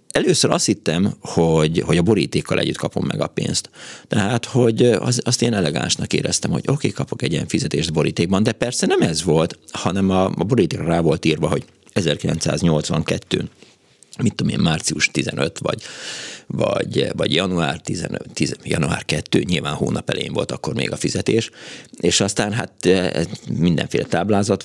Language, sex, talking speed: Hungarian, male, 160 wpm